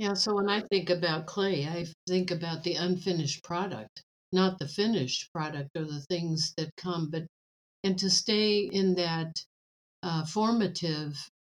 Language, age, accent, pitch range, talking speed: English, 60-79, American, 165-195 Hz, 155 wpm